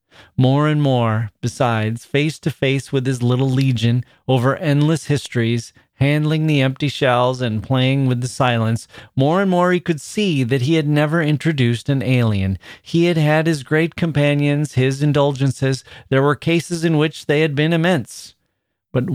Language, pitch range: English, 120-150 Hz